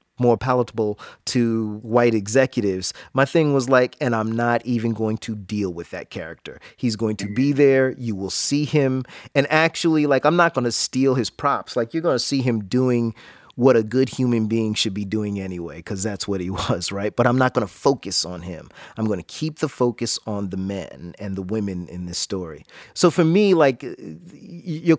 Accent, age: American, 30-49